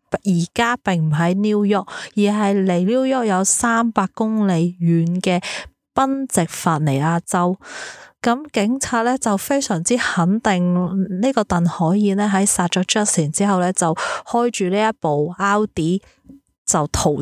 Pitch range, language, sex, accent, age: 175-225 Hz, Chinese, female, native, 20-39